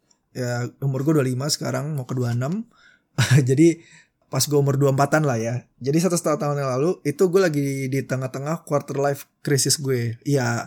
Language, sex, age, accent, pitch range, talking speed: Indonesian, male, 20-39, native, 135-165 Hz, 170 wpm